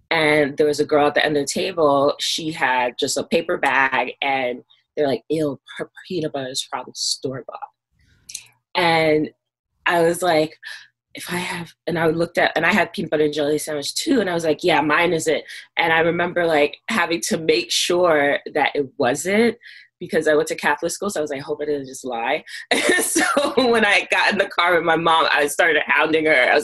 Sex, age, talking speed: female, 20-39, 220 wpm